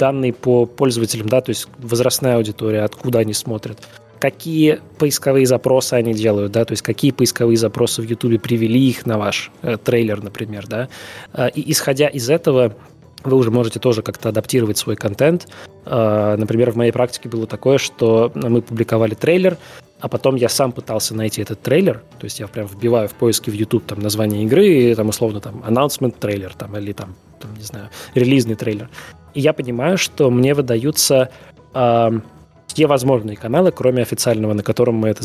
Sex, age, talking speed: male, 20-39, 180 wpm